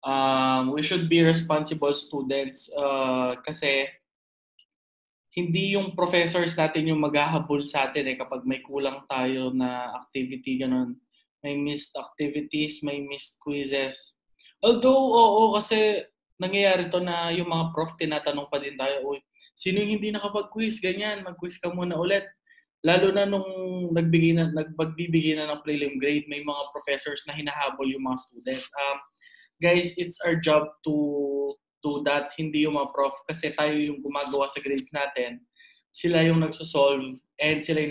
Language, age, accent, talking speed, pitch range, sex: Filipino, 20-39, native, 145 wpm, 140-180 Hz, male